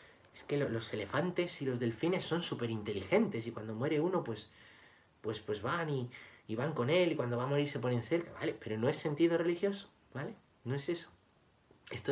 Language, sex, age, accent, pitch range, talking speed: Spanish, male, 30-49, Spanish, 100-145 Hz, 210 wpm